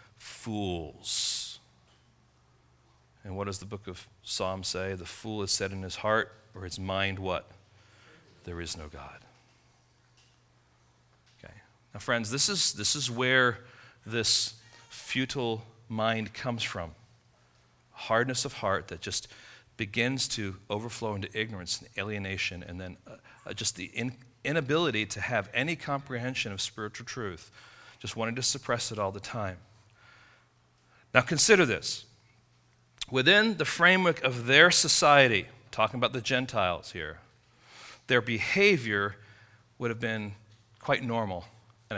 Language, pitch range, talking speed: English, 100-130 Hz, 130 wpm